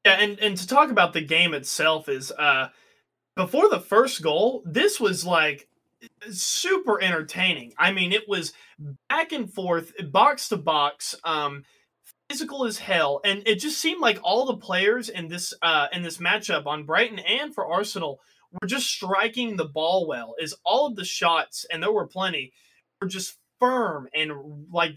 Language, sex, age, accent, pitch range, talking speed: English, male, 20-39, American, 155-210 Hz, 175 wpm